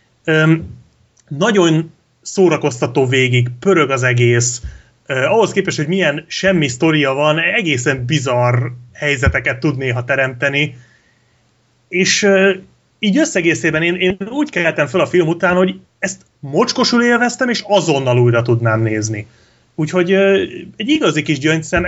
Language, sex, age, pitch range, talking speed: Hungarian, male, 30-49, 125-165 Hz, 120 wpm